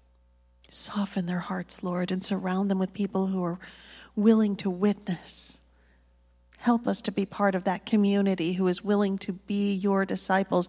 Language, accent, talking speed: English, American, 165 wpm